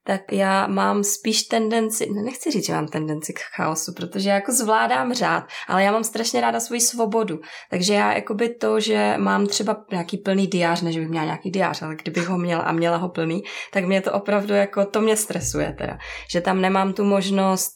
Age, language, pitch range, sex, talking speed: 20-39, Czech, 170-200 Hz, female, 210 wpm